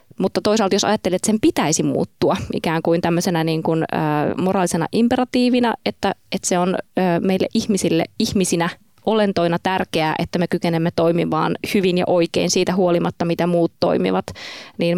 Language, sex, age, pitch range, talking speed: Finnish, female, 20-39, 160-195 Hz, 155 wpm